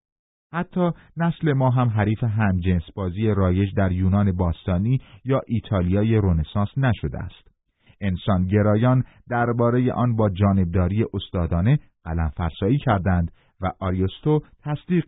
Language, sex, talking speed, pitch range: Persian, male, 110 wpm, 95-120 Hz